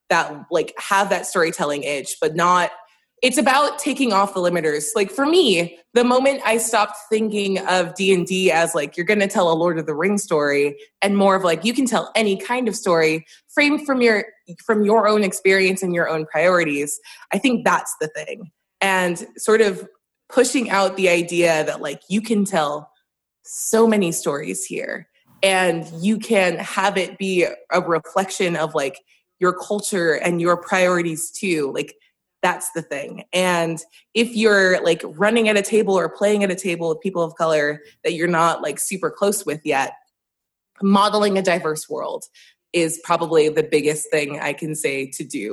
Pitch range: 165-210 Hz